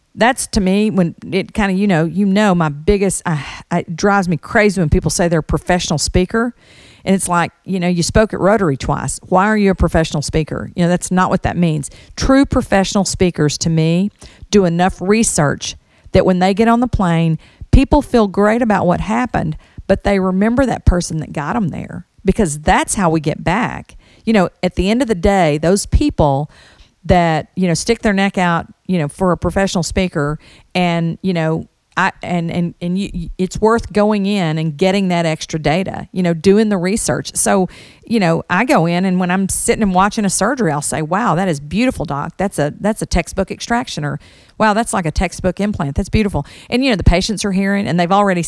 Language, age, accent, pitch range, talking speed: English, 50-69, American, 165-205 Hz, 215 wpm